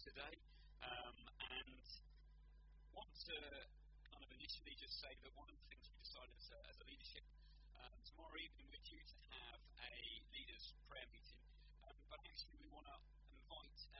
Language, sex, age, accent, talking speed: English, male, 40-59, British, 170 wpm